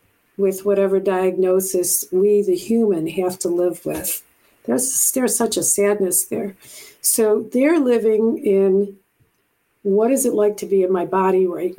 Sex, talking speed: female, 155 wpm